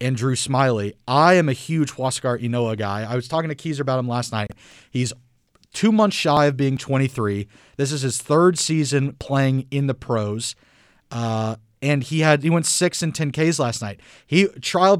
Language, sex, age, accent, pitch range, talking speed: English, male, 30-49, American, 110-145 Hz, 190 wpm